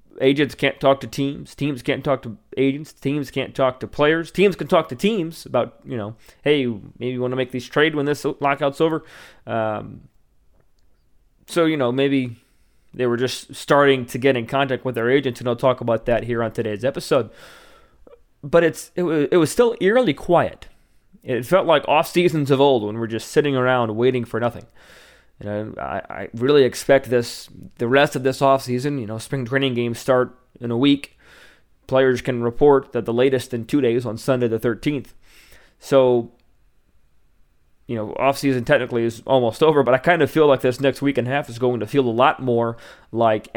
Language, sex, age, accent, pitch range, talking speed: English, male, 20-39, American, 115-140 Hz, 200 wpm